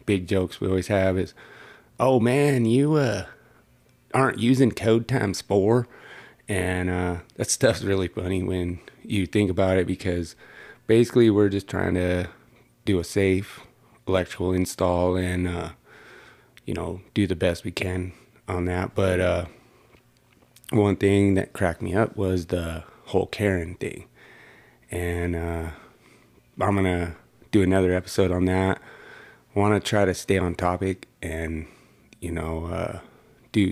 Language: English